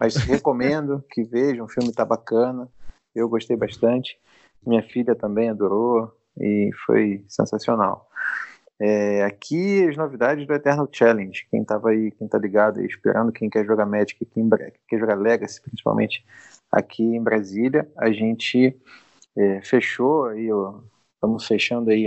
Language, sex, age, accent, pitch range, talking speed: Portuguese, male, 30-49, Brazilian, 105-125 Hz, 145 wpm